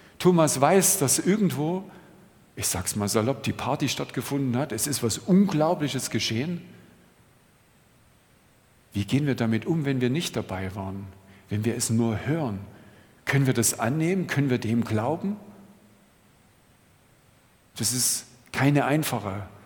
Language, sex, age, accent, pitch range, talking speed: German, male, 50-69, German, 115-150 Hz, 135 wpm